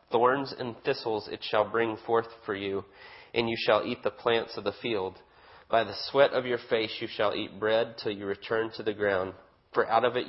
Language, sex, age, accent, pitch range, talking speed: English, male, 30-49, American, 100-115 Hz, 220 wpm